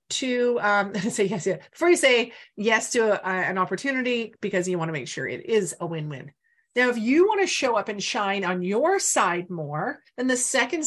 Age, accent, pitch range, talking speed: 40-59, American, 185-255 Hz, 220 wpm